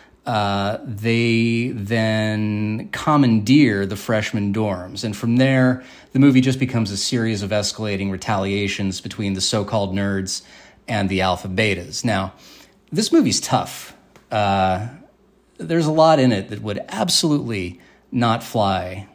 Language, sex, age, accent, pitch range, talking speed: English, male, 30-49, American, 100-130 Hz, 130 wpm